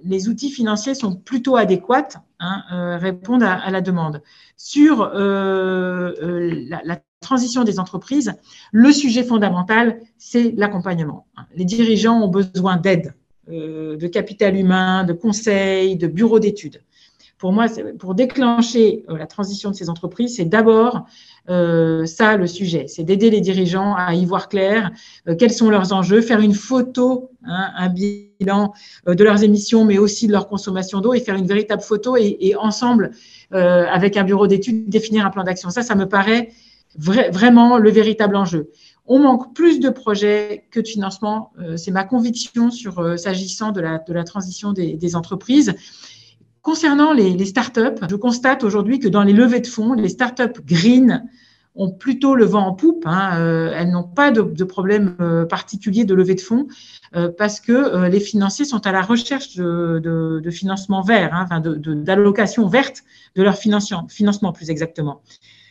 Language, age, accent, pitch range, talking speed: French, 50-69, French, 180-230 Hz, 175 wpm